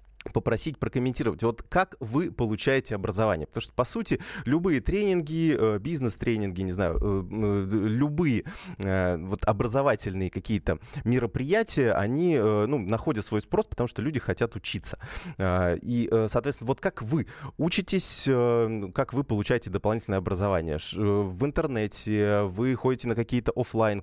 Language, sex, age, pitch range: Russian, male, 20-39, 100-130 Hz